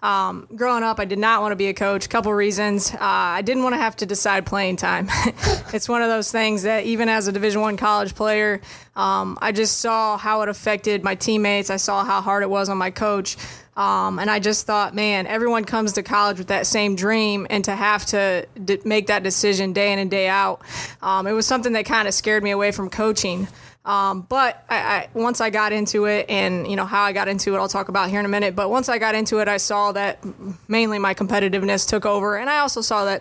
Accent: American